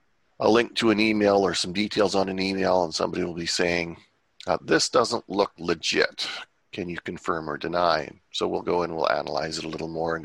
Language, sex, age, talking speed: English, male, 40-59, 215 wpm